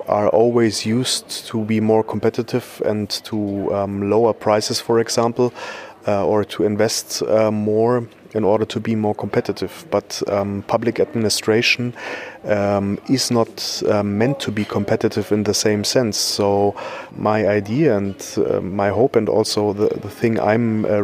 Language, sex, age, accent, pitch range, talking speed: English, male, 30-49, German, 105-120 Hz, 160 wpm